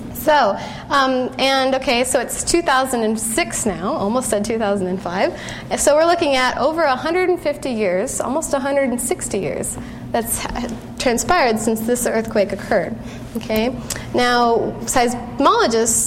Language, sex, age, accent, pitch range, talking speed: English, female, 20-39, American, 225-285 Hz, 115 wpm